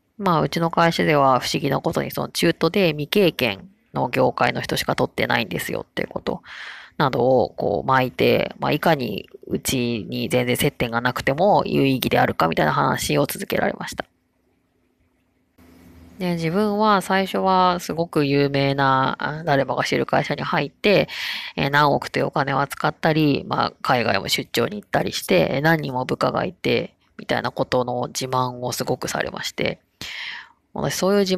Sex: female